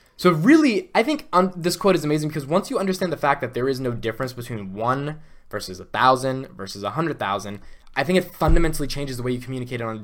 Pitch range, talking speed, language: 95-130 Hz, 240 wpm, English